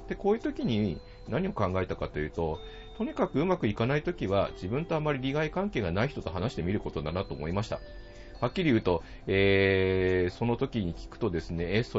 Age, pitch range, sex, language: 40-59, 85-120 Hz, male, Japanese